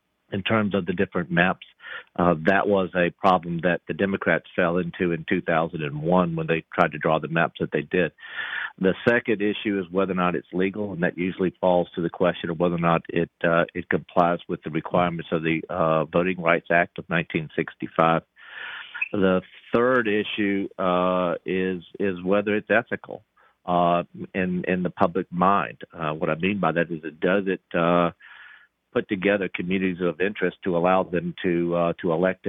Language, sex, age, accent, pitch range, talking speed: English, male, 50-69, American, 85-95 Hz, 185 wpm